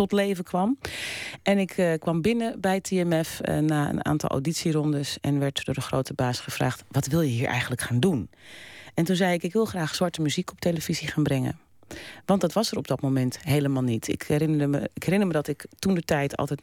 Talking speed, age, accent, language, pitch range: 225 wpm, 30-49, Dutch, Dutch, 145-200 Hz